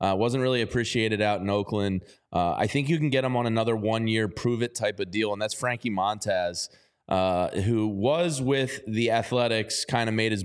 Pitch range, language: 105-125 Hz, English